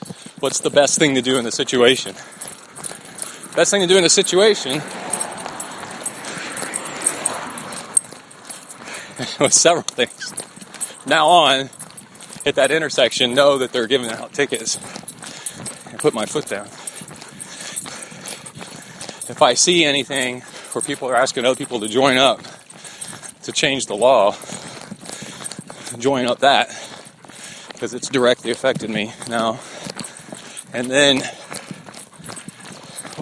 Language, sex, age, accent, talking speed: English, male, 30-49, American, 115 wpm